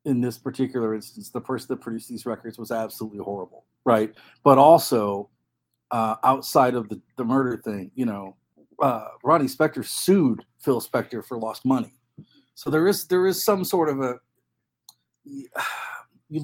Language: English